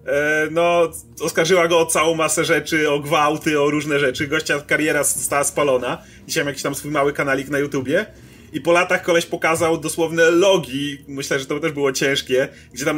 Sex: male